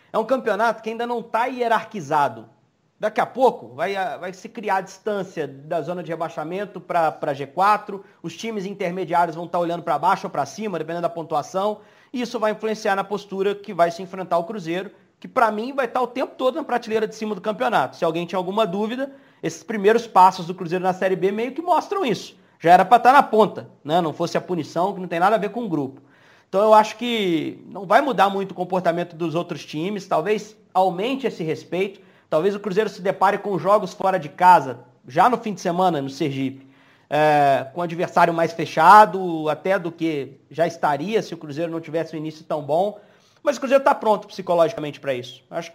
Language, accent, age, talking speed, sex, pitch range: Portuguese, Brazilian, 40-59, 210 wpm, male, 170-215 Hz